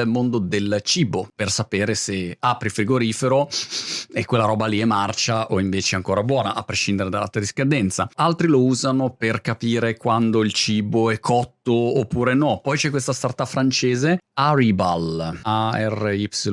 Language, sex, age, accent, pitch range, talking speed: Italian, male, 30-49, native, 105-145 Hz, 155 wpm